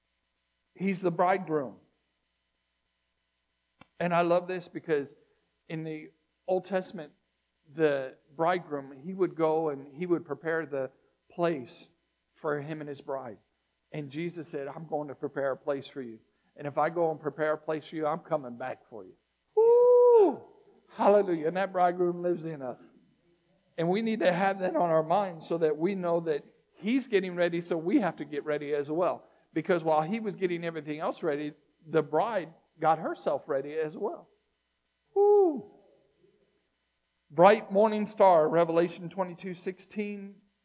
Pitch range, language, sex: 145-185 Hz, English, male